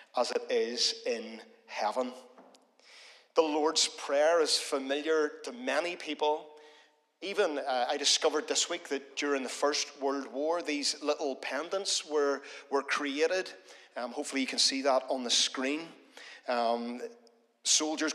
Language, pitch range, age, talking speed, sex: English, 130-155 Hz, 40-59, 135 wpm, male